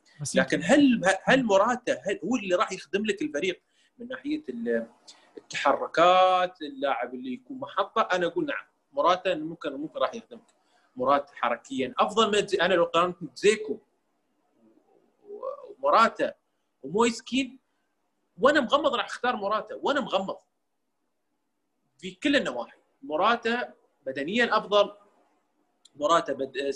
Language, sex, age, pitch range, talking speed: Arabic, male, 30-49, 180-275 Hz, 110 wpm